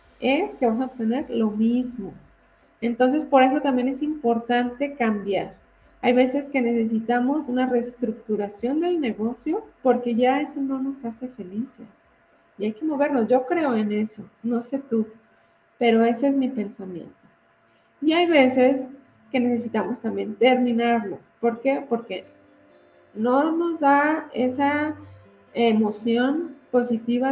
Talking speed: 135 wpm